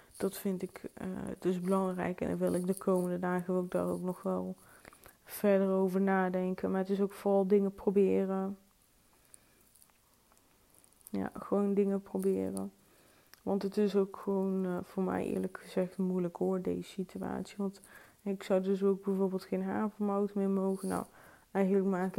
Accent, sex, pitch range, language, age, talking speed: Dutch, female, 185-195 Hz, Dutch, 20-39, 160 wpm